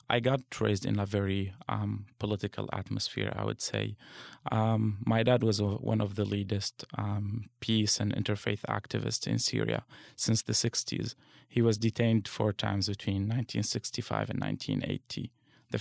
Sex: male